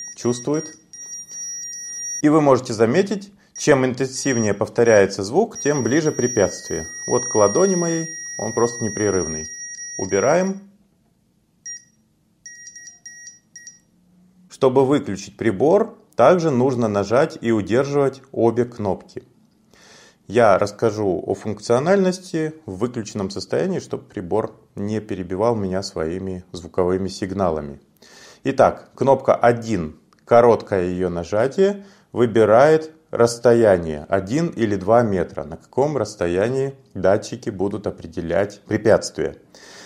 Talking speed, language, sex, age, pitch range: 95 wpm, Russian, male, 30-49, 100-160 Hz